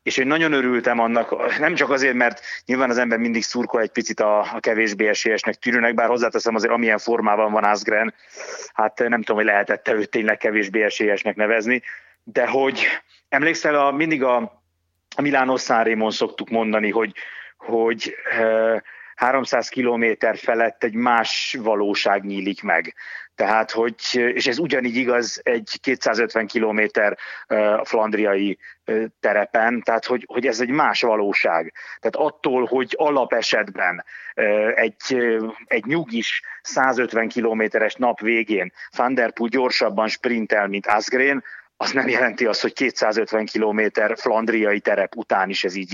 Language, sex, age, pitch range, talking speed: Hungarian, male, 30-49, 110-125 Hz, 135 wpm